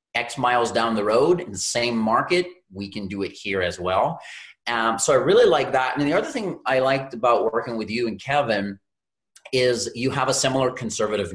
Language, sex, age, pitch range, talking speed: English, male, 30-49, 110-150 Hz, 210 wpm